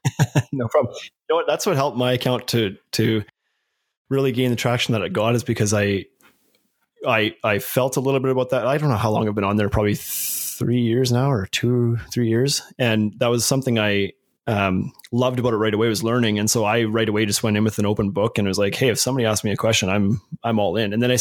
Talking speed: 255 wpm